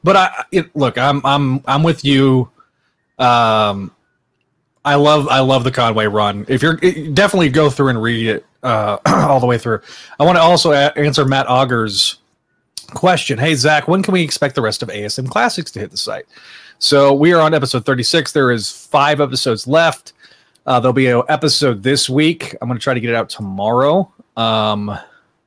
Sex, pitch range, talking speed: male, 115-145 Hz, 195 wpm